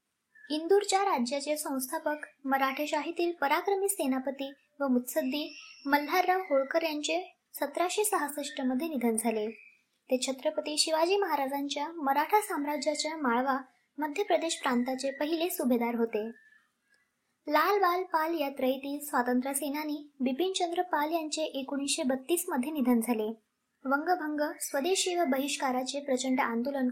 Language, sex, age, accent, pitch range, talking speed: Marathi, male, 20-39, native, 265-325 Hz, 105 wpm